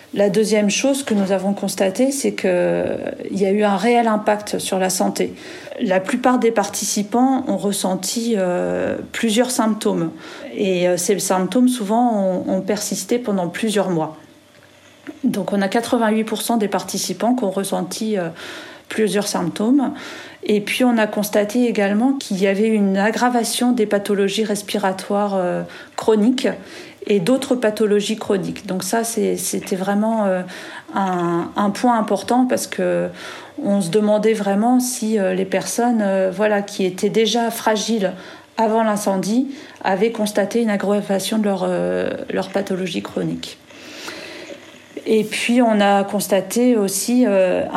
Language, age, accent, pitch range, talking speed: French, 40-59, French, 195-235 Hz, 135 wpm